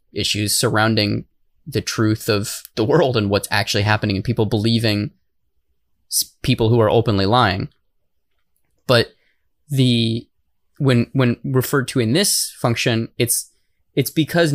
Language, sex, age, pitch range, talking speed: English, male, 20-39, 110-140 Hz, 130 wpm